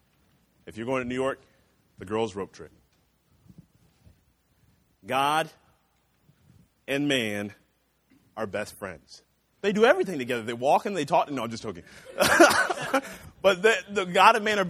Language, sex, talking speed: English, male, 145 wpm